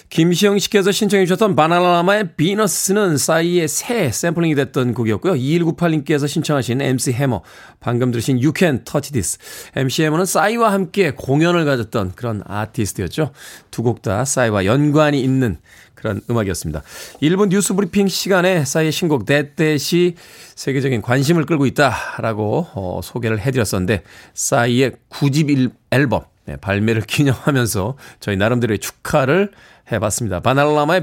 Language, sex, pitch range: Korean, male, 120-180 Hz